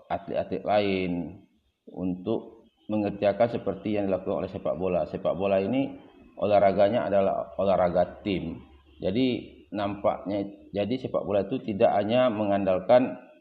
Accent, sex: native, male